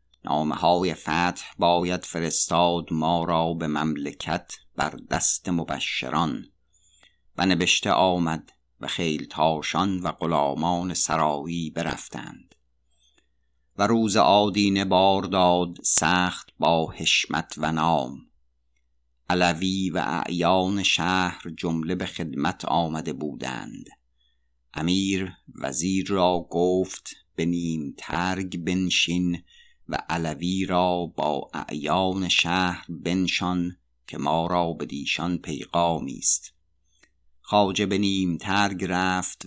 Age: 50-69